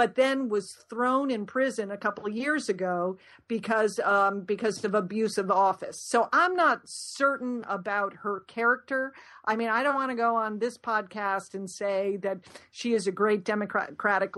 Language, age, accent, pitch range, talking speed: English, 50-69, American, 200-240 Hz, 180 wpm